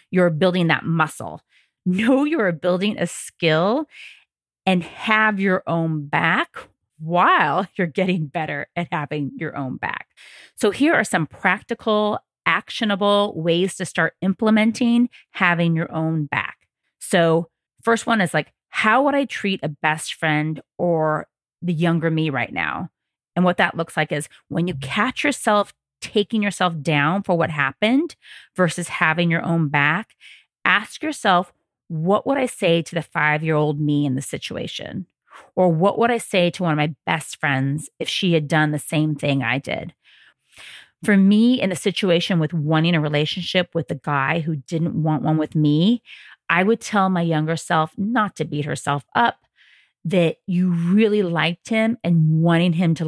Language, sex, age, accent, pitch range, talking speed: English, female, 30-49, American, 160-200 Hz, 165 wpm